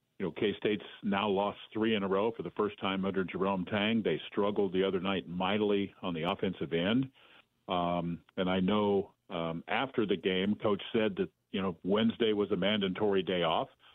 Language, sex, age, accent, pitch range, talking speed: English, male, 50-69, American, 90-110 Hz, 195 wpm